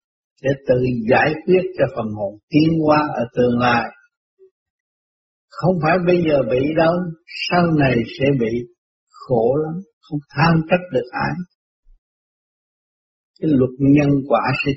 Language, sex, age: Vietnamese, male, 60-79